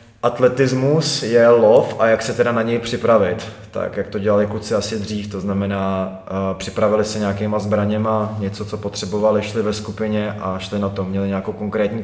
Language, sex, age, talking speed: Czech, male, 20-39, 180 wpm